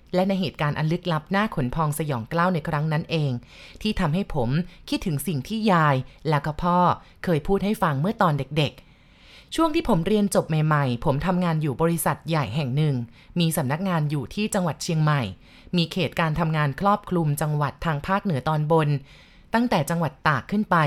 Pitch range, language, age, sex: 150-190 Hz, Thai, 20-39, female